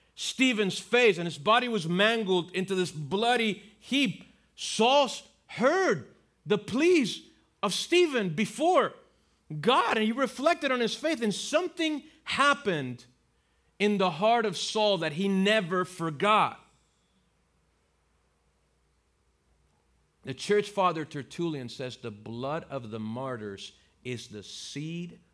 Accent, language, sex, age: American, English, male, 40-59